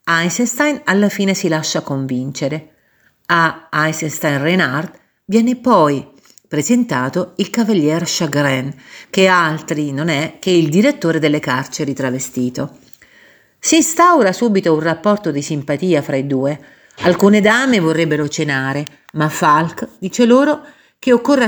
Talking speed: 125 wpm